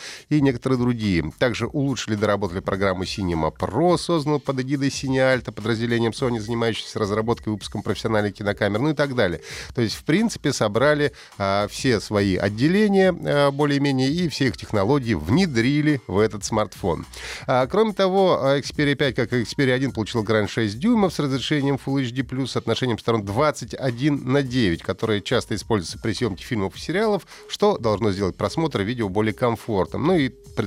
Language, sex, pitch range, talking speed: Russian, male, 105-140 Hz, 165 wpm